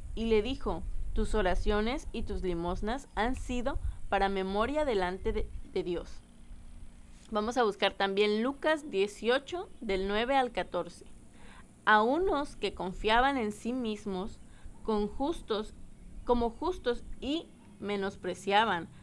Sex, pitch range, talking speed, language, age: female, 195-250 Hz, 125 wpm, Spanish, 20-39